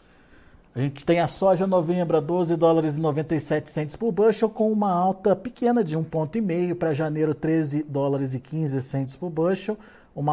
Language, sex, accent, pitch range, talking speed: Portuguese, male, Brazilian, 145-180 Hz, 140 wpm